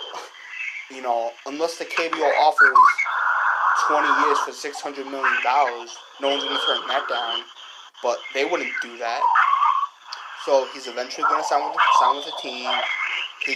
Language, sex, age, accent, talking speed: English, male, 20-39, American, 145 wpm